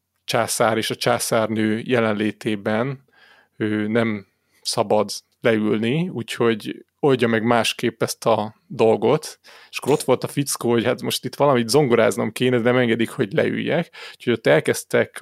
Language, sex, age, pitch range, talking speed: Hungarian, male, 30-49, 110-120 Hz, 145 wpm